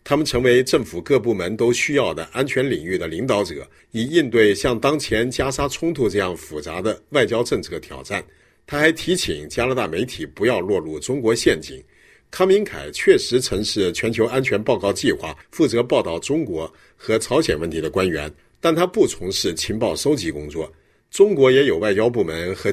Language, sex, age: Chinese, male, 50-69